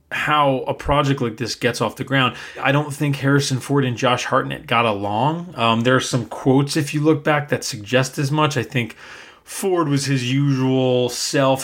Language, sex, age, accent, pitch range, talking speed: English, male, 30-49, American, 115-145 Hz, 200 wpm